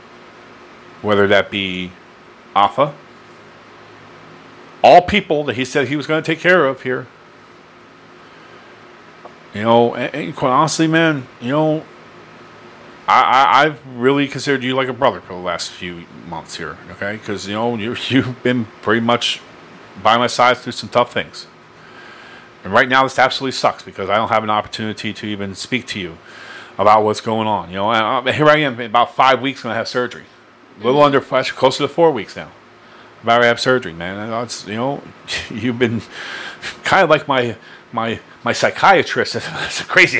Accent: American